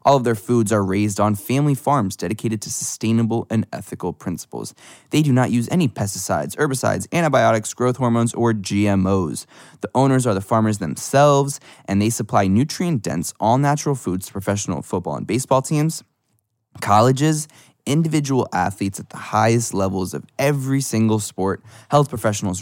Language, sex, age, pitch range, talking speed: English, male, 20-39, 100-120 Hz, 155 wpm